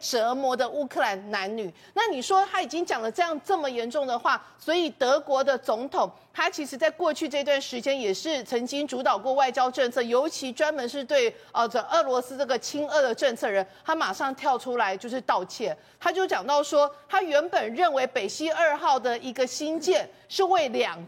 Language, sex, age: Chinese, female, 40-59